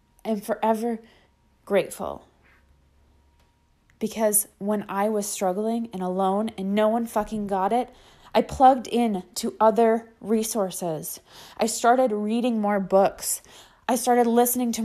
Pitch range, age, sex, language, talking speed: 190-235 Hz, 20-39, female, English, 125 wpm